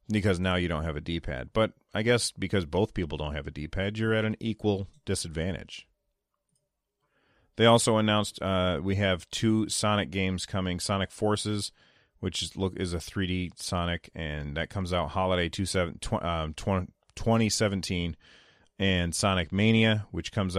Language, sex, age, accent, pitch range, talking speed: English, male, 30-49, American, 90-105 Hz, 165 wpm